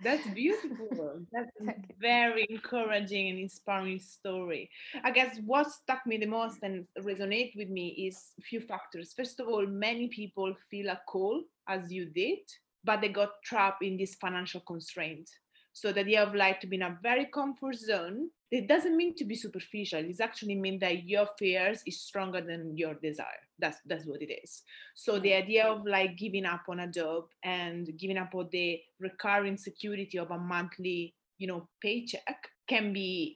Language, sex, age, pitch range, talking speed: English, female, 20-39, 180-230 Hz, 185 wpm